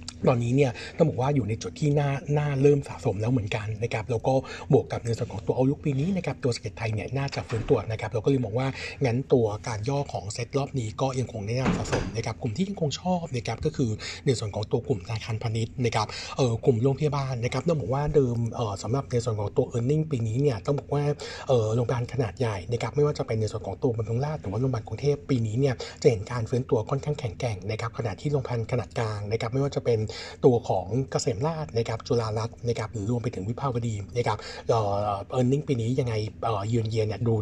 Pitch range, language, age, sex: 115-140 Hz, Thai, 60-79, male